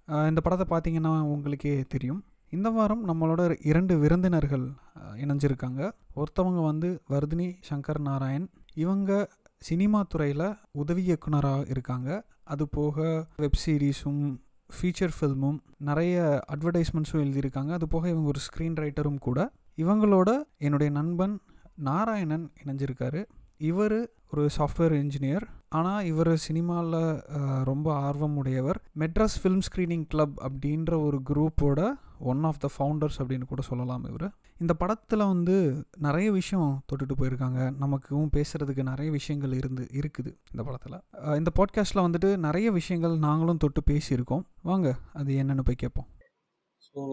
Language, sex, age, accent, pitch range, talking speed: Tamil, male, 30-49, native, 140-175 Hz, 120 wpm